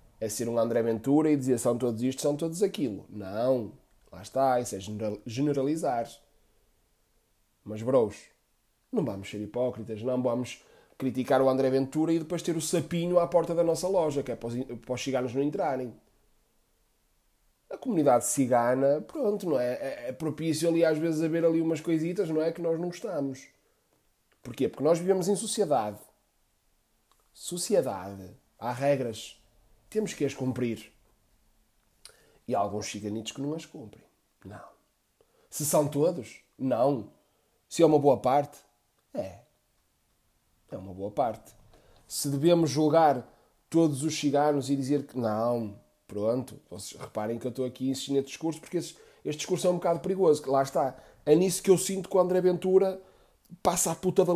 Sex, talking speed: male, 165 wpm